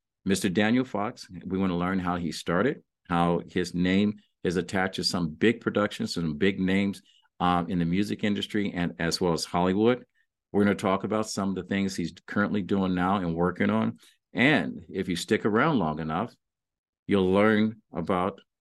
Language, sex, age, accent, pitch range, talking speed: English, male, 50-69, American, 90-110 Hz, 185 wpm